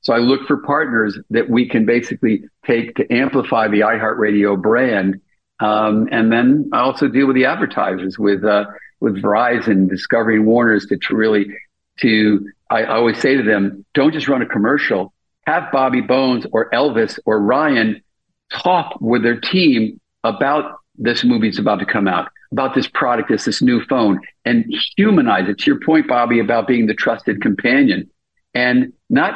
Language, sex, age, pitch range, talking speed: English, male, 50-69, 105-135 Hz, 170 wpm